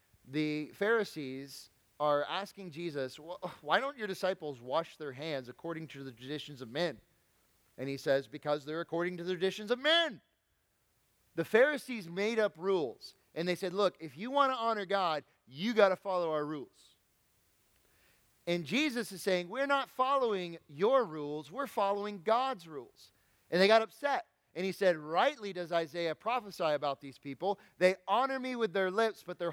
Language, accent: English, American